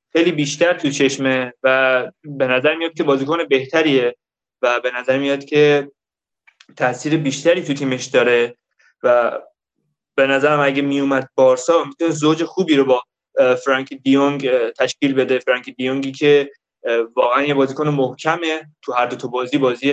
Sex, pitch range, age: male, 130-165 Hz, 20-39